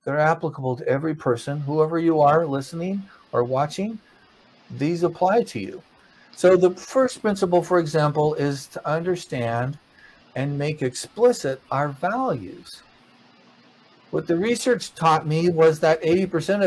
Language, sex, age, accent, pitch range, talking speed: English, male, 50-69, American, 130-175 Hz, 135 wpm